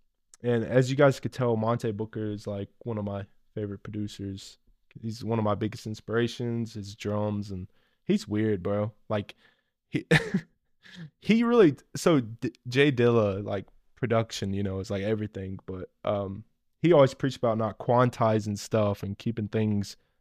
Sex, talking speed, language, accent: male, 155 wpm, English, American